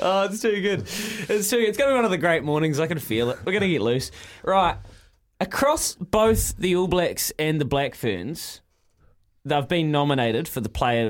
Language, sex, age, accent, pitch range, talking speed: English, male, 20-39, Australian, 100-155 Hz, 220 wpm